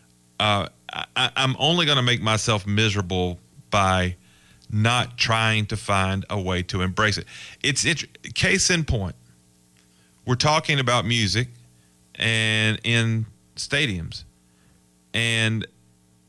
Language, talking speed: English, 120 wpm